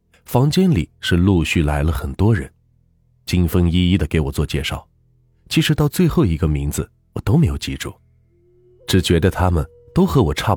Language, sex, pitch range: Chinese, male, 80-115 Hz